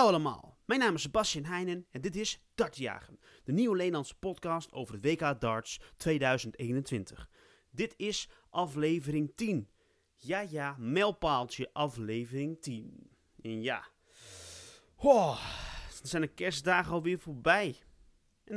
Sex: male